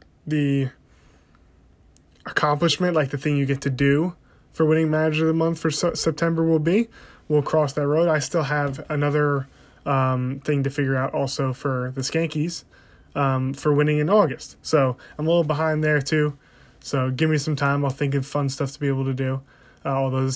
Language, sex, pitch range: English, male, 130-155 Hz